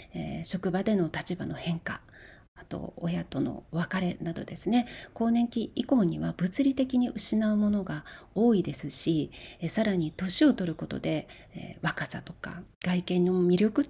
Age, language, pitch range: 40-59, Japanese, 165-215 Hz